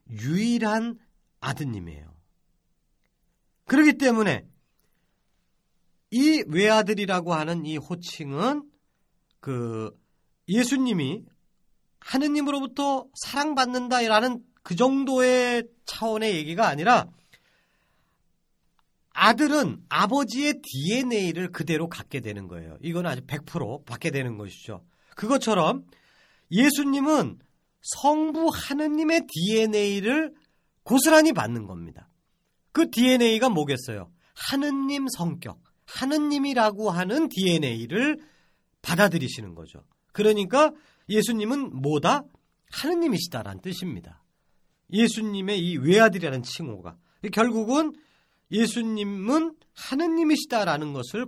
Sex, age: male, 40-59